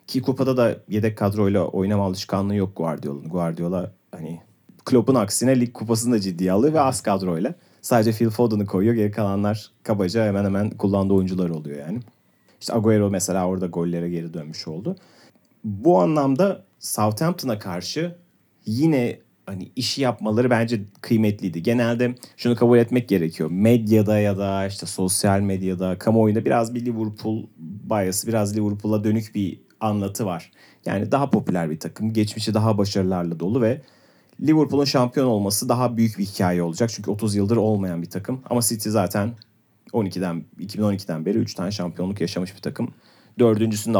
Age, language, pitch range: 30-49, Turkish, 95-120 Hz